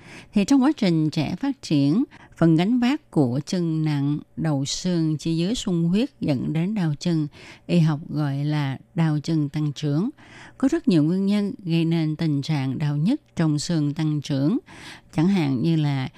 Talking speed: 185 wpm